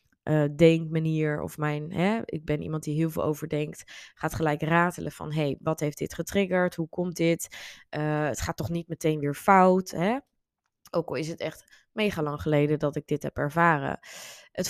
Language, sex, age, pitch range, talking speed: Dutch, female, 20-39, 150-170 Hz, 190 wpm